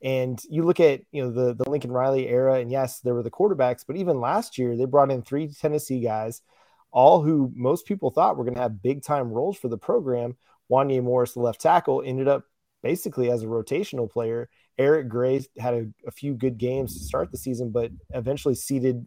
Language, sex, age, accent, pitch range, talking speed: English, male, 30-49, American, 120-145 Hz, 215 wpm